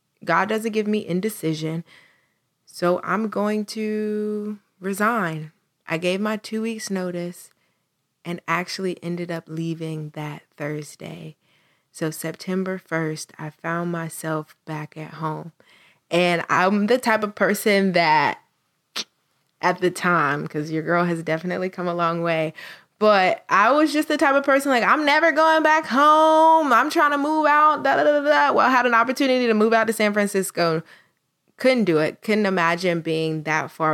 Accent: American